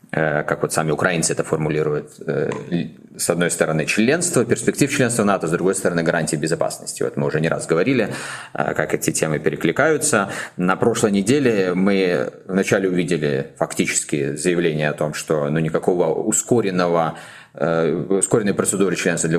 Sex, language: male, Russian